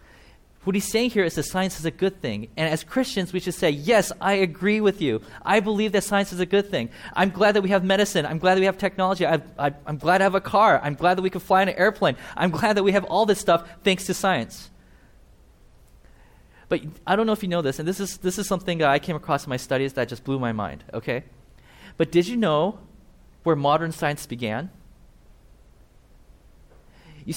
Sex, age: male, 20-39